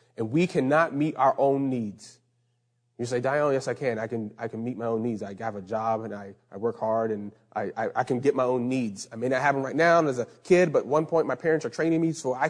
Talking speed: 290 wpm